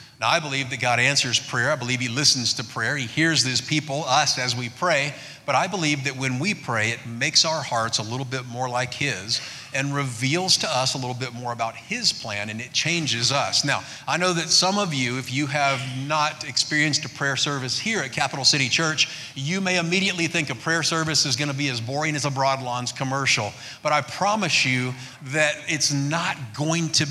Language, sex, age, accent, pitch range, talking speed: English, male, 50-69, American, 125-150 Hz, 215 wpm